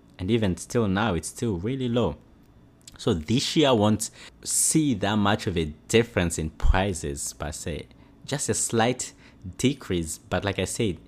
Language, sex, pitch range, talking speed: English, male, 95-125 Hz, 170 wpm